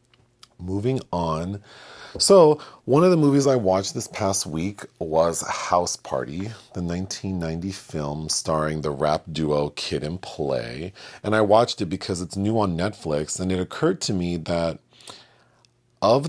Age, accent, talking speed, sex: 40-59, American, 150 wpm, male